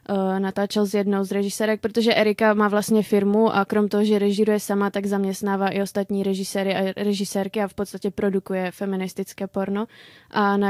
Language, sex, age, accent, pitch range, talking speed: Czech, female, 20-39, native, 195-210 Hz, 175 wpm